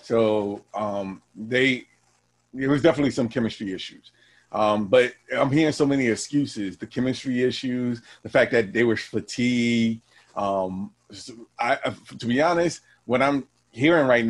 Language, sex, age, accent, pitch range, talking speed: English, male, 30-49, American, 110-130 Hz, 145 wpm